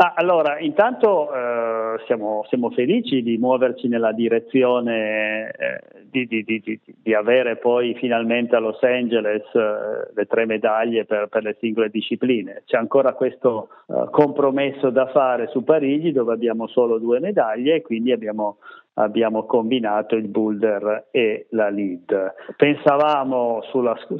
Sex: male